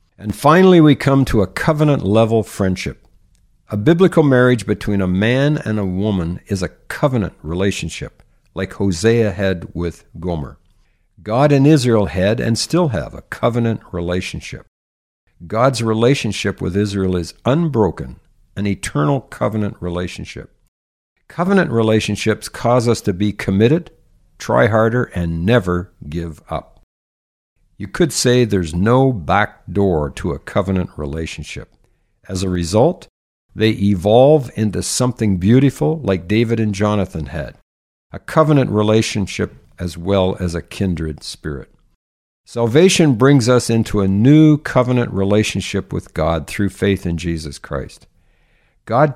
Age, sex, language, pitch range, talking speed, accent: 60-79, male, English, 90-115 Hz, 130 wpm, American